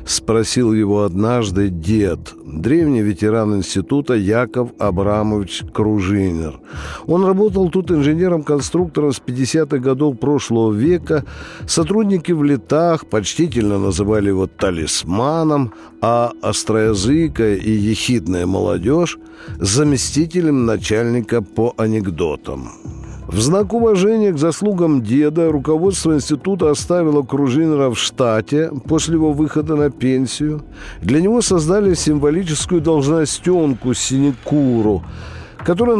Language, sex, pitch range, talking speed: Russian, male, 110-160 Hz, 100 wpm